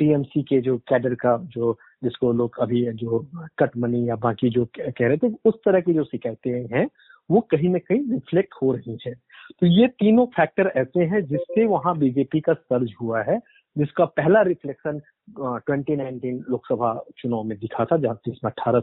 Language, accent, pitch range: Hindi, native, 125-175 Hz